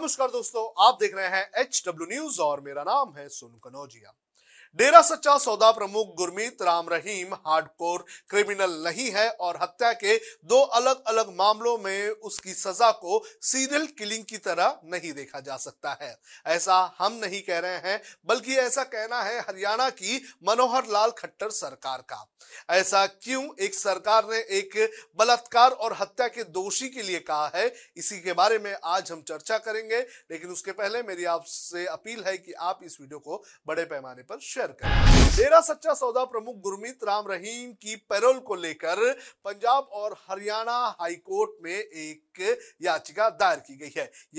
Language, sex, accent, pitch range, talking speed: Hindi, male, native, 180-245 Hz, 165 wpm